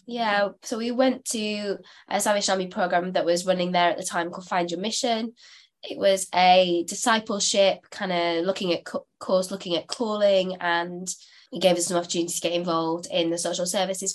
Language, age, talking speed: English, 20-39, 195 wpm